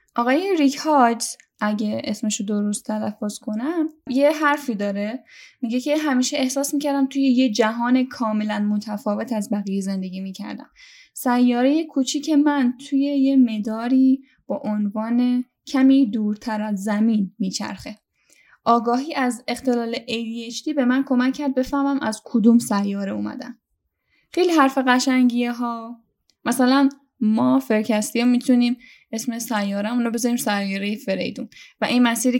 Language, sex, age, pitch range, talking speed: Persian, female, 10-29, 215-265 Hz, 130 wpm